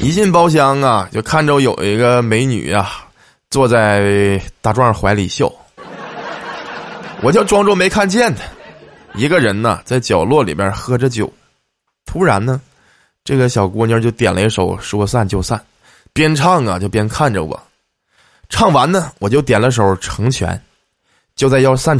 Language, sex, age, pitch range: Chinese, male, 20-39, 100-140 Hz